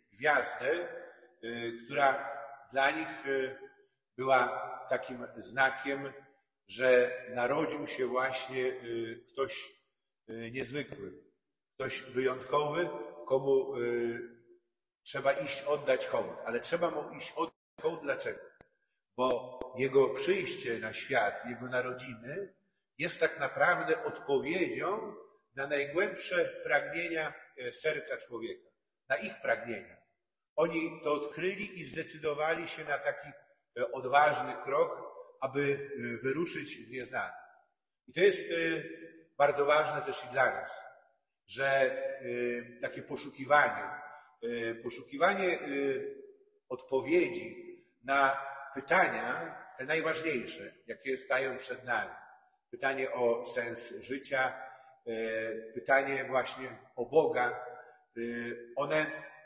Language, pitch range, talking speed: Polish, 130-195 Hz, 90 wpm